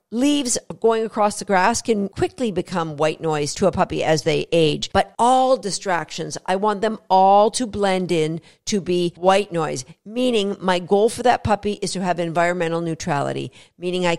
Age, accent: 50-69, American